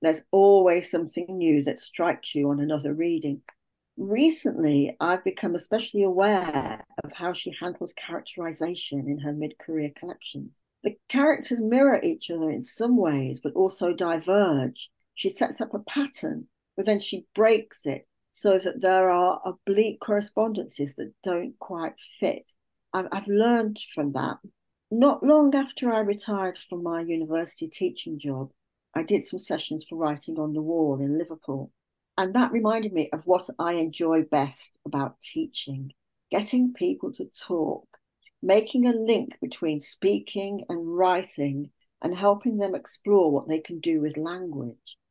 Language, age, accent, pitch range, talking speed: English, 60-79, British, 155-210 Hz, 150 wpm